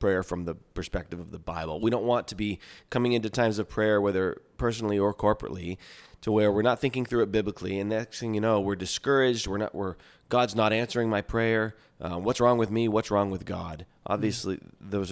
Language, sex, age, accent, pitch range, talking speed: English, male, 20-39, American, 95-115 Hz, 220 wpm